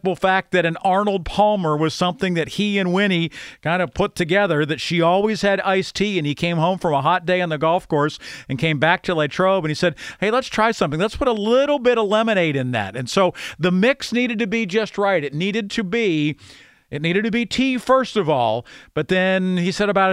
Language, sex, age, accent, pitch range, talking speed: English, male, 50-69, American, 150-190 Hz, 240 wpm